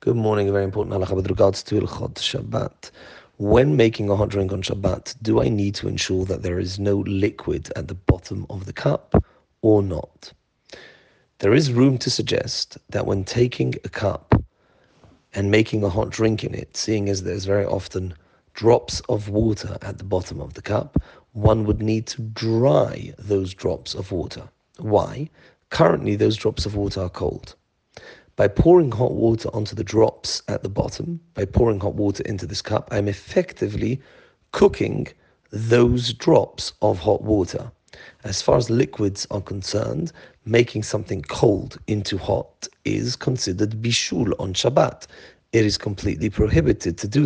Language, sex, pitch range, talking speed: English, male, 100-115 Hz, 165 wpm